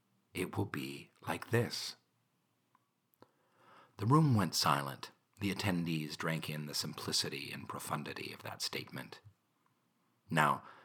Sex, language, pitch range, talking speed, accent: male, English, 80-105 Hz, 115 wpm, American